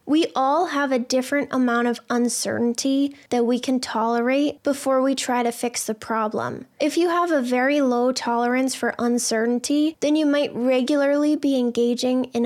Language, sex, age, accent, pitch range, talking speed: English, female, 10-29, American, 235-270 Hz, 170 wpm